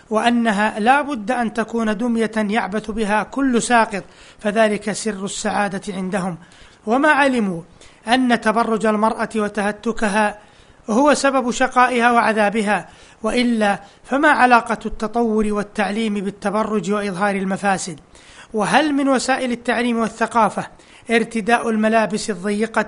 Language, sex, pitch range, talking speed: Arabic, male, 210-240 Hz, 105 wpm